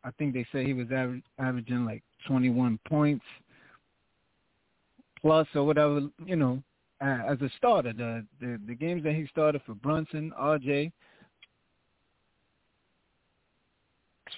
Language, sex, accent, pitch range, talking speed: English, male, American, 120-155 Hz, 130 wpm